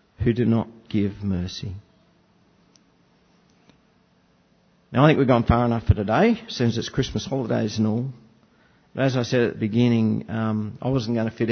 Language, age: English, 50-69